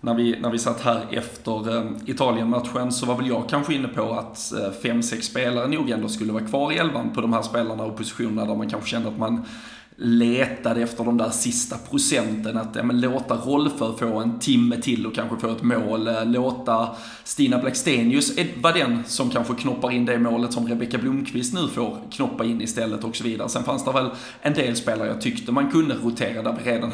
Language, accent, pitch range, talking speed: Swedish, native, 115-125 Hz, 210 wpm